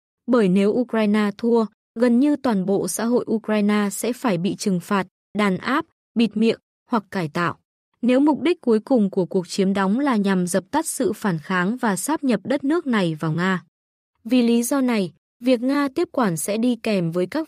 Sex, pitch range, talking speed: female, 195-250 Hz, 205 wpm